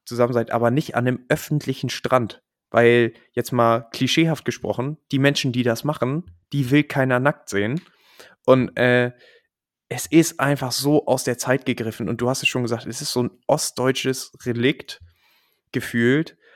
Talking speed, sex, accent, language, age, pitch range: 165 wpm, male, German, German, 20-39, 120-145 Hz